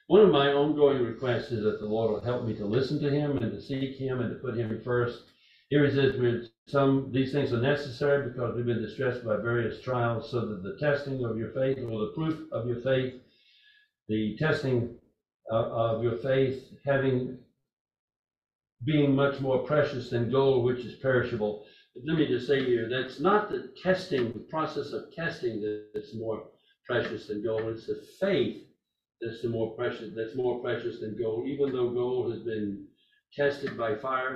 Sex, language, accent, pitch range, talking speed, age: male, English, American, 115-145 Hz, 185 wpm, 60-79